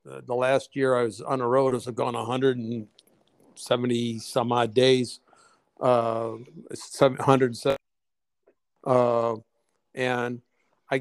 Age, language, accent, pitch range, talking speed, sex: 60-79, English, American, 120-130 Hz, 110 wpm, male